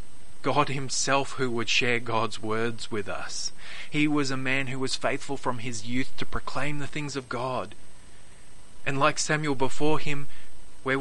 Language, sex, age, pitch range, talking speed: English, male, 20-39, 115-140 Hz, 170 wpm